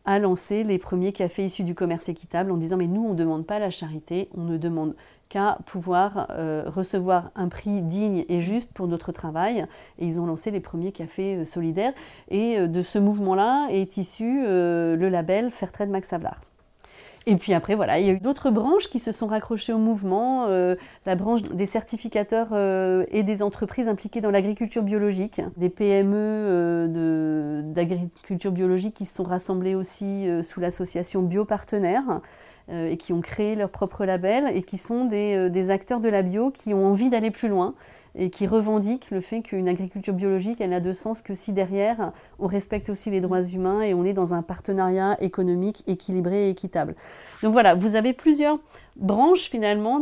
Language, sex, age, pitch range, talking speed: French, female, 30-49, 180-215 Hz, 195 wpm